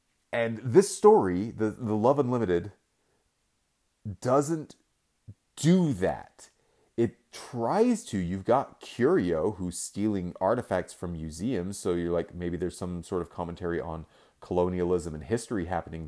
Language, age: English, 30-49